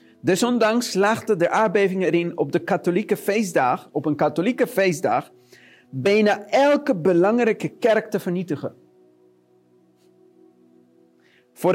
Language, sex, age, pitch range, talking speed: Dutch, male, 40-59, 155-200 Hz, 100 wpm